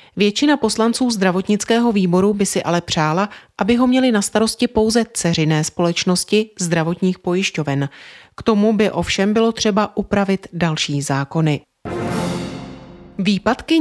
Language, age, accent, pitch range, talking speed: Czech, 30-49, native, 175-220 Hz, 120 wpm